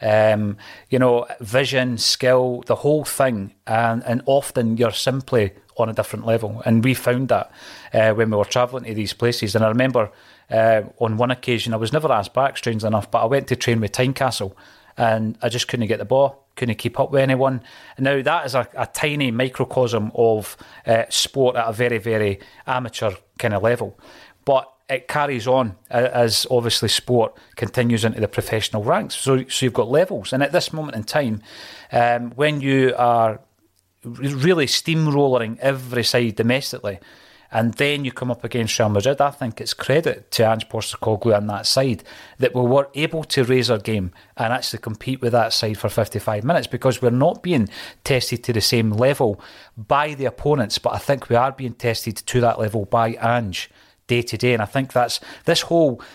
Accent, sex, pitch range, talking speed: British, male, 110-130 Hz, 195 wpm